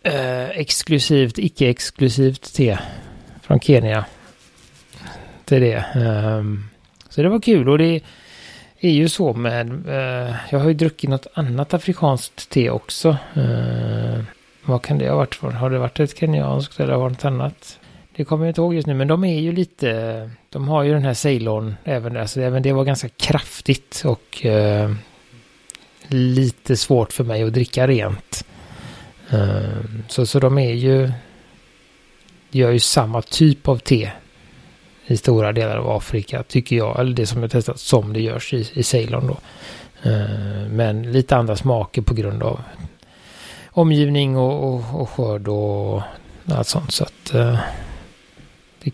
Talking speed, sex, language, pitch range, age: 150 wpm, male, Swedish, 110-140 Hz, 30-49